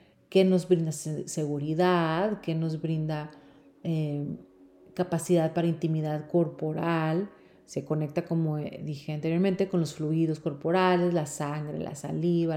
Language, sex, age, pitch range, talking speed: Spanish, female, 40-59, 155-185 Hz, 120 wpm